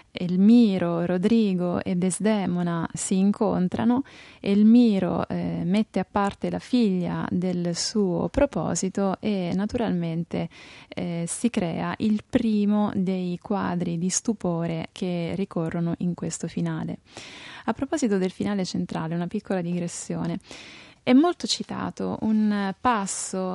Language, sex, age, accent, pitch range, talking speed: Italian, female, 20-39, native, 180-225 Hz, 115 wpm